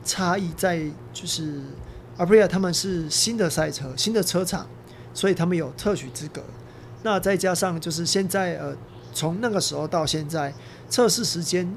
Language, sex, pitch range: Chinese, male, 145-185 Hz